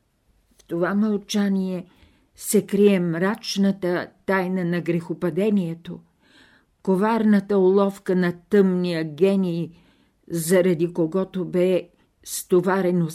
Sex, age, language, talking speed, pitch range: female, 50-69, Bulgarian, 80 wpm, 170-200 Hz